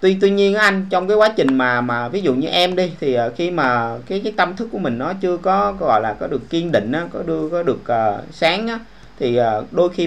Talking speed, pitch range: 280 wpm, 120-180 Hz